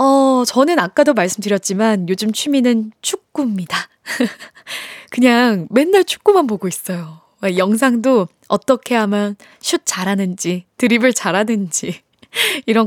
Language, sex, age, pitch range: Korean, female, 20-39, 195-285 Hz